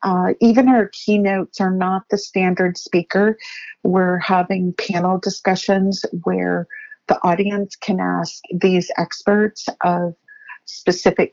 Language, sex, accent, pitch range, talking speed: English, female, American, 180-210 Hz, 115 wpm